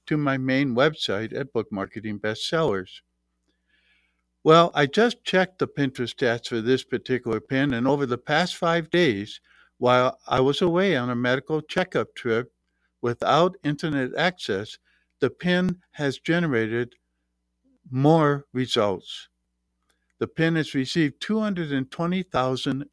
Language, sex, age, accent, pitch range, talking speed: English, male, 60-79, American, 115-160 Hz, 130 wpm